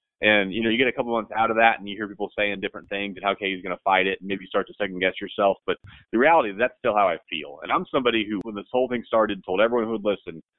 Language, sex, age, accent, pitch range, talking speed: English, male, 30-49, American, 100-120 Hz, 315 wpm